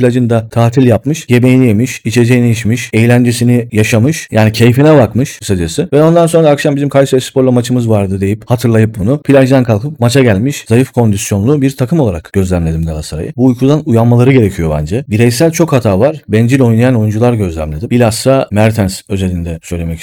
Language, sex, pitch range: Turkish, male, 105-130 Hz